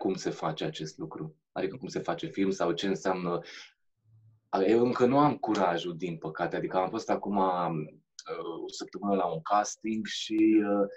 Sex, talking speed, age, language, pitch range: male, 165 wpm, 20-39, Romanian, 95-150 Hz